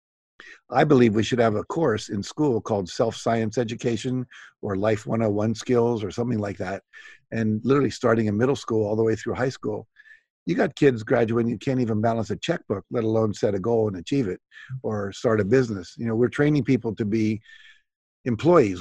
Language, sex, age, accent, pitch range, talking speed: English, male, 50-69, American, 110-125 Hz, 200 wpm